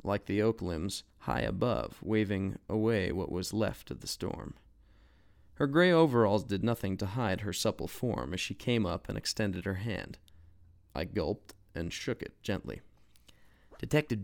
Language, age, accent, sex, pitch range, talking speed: English, 30-49, American, male, 95-135 Hz, 165 wpm